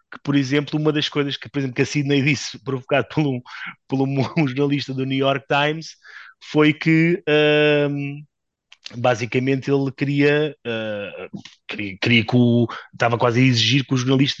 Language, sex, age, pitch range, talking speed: Portuguese, male, 30-49, 125-150 Hz, 170 wpm